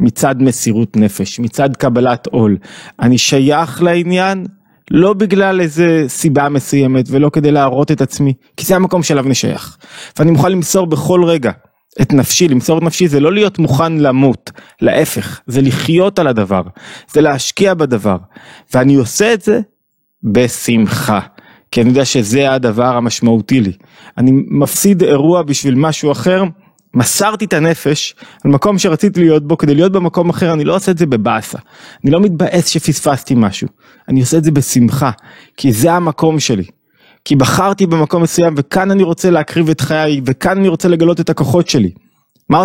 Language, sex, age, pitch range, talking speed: Hebrew, male, 20-39, 130-175 Hz, 160 wpm